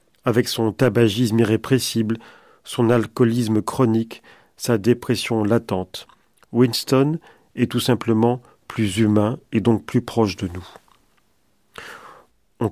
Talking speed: 110 wpm